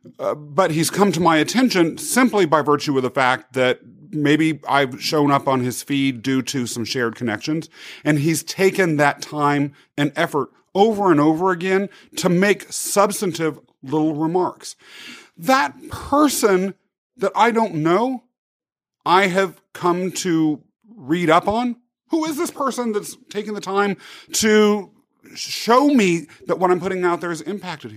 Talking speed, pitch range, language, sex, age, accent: 160 wpm, 155-220 Hz, English, male, 40-59, American